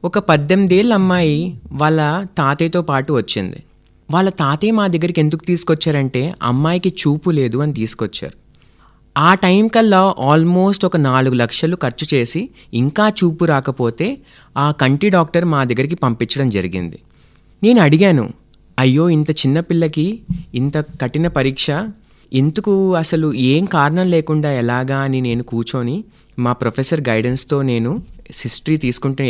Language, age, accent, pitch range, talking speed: Telugu, 30-49, native, 125-175 Hz, 125 wpm